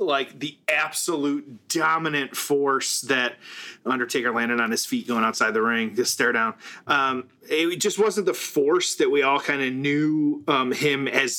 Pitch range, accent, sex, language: 130-210 Hz, American, male, English